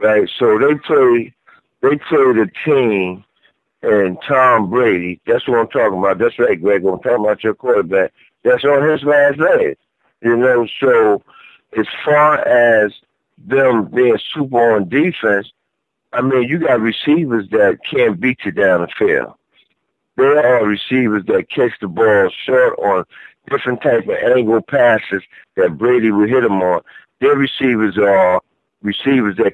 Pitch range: 110-155 Hz